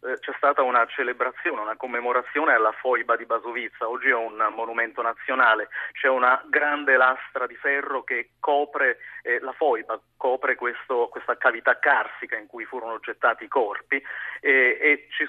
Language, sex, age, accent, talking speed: Italian, male, 30-49, native, 155 wpm